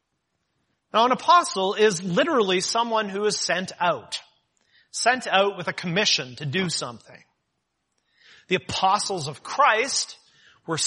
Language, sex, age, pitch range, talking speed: English, male, 30-49, 165-230 Hz, 125 wpm